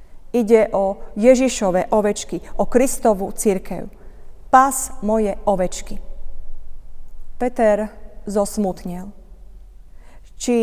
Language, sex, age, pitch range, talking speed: Slovak, female, 30-49, 180-230 Hz, 75 wpm